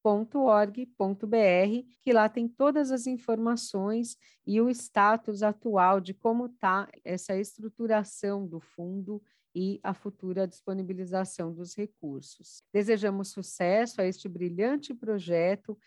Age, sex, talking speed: 40-59, female, 115 wpm